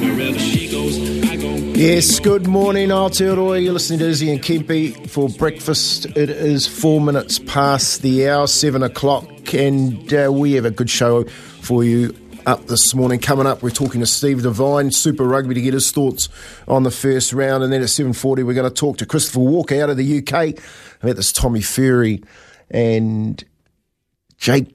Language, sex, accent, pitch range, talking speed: English, male, Australian, 115-140 Hz, 170 wpm